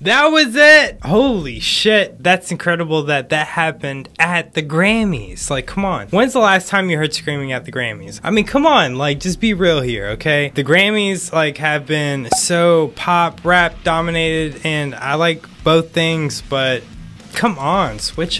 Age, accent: 20-39, American